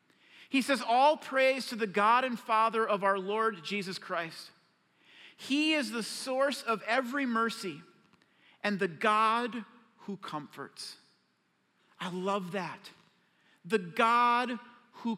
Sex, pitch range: male, 200-250 Hz